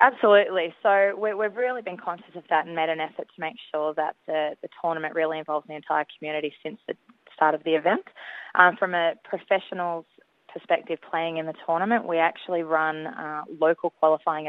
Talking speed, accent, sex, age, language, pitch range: 190 wpm, Australian, female, 20-39, English, 150-175 Hz